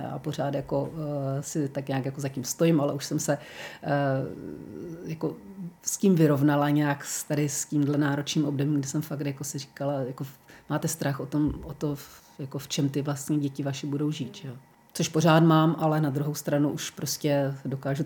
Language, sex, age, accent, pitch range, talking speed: Czech, female, 40-59, native, 145-165 Hz, 195 wpm